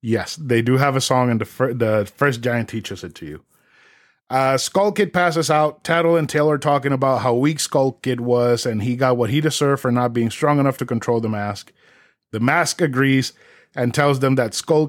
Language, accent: English, American